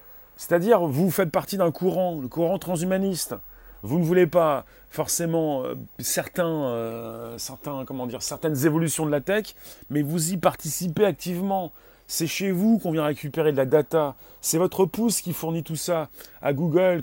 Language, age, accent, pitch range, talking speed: French, 30-49, French, 140-185 Hz, 155 wpm